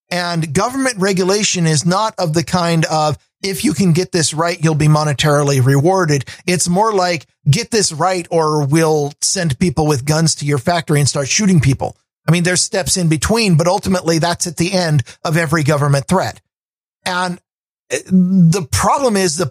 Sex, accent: male, American